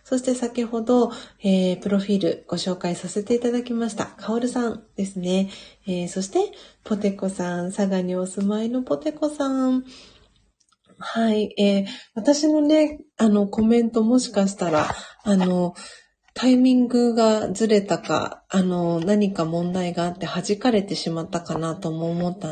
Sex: female